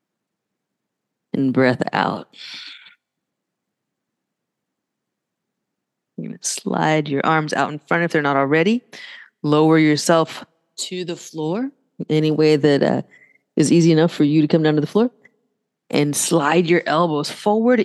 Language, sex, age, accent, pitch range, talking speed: English, female, 30-49, American, 140-185 Hz, 135 wpm